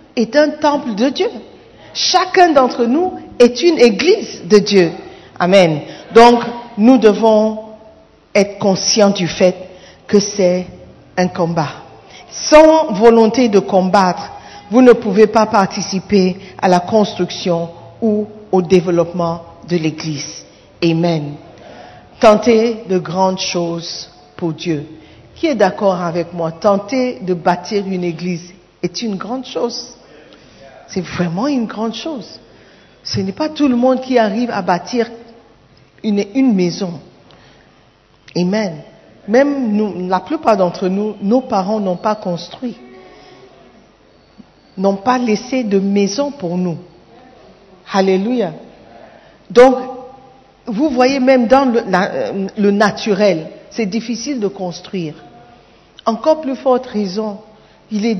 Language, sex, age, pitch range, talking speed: French, female, 50-69, 180-240 Hz, 120 wpm